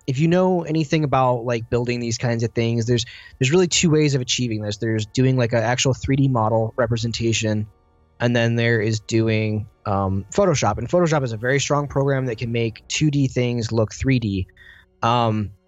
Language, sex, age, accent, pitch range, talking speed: English, male, 20-39, American, 115-135 Hz, 190 wpm